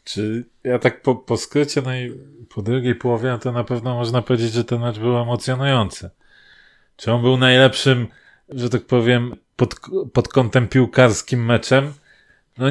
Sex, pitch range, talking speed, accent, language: male, 115-130 Hz, 160 wpm, native, Polish